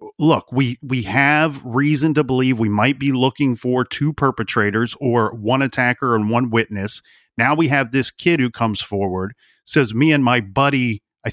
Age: 40-59